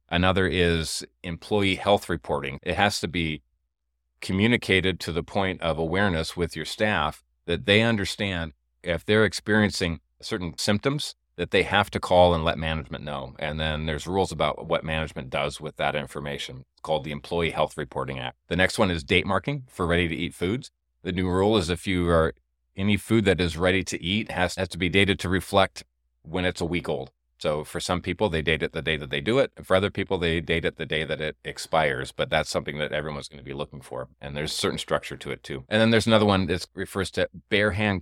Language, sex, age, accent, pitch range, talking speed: English, male, 40-59, American, 80-95 Hz, 220 wpm